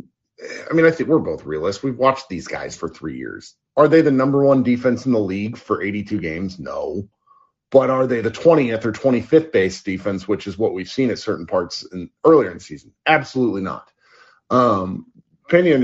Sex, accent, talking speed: male, American, 200 wpm